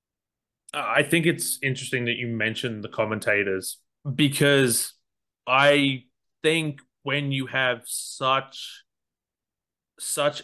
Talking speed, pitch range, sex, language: 100 wpm, 110-130 Hz, male, English